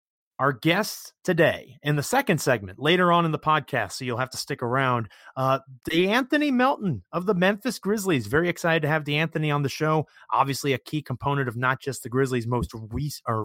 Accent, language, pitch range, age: American, English, 125-155 Hz, 30-49